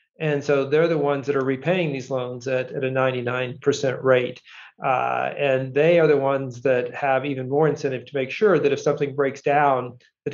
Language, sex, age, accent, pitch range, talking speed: English, male, 40-59, American, 135-155 Hz, 205 wpm